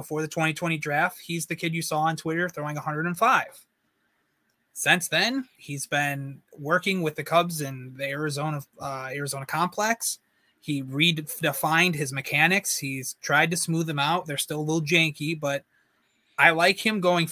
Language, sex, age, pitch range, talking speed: English, male, 20-39, 145-175 Hz, 165 wpm